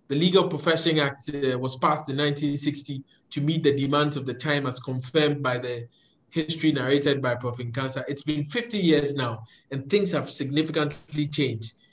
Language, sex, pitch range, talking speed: English, male, 135-160 Hz, 180 wpm